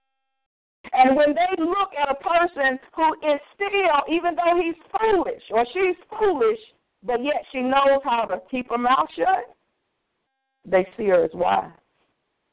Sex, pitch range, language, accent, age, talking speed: female, 175-290 Hz, English, American, 50-69, 155 wpm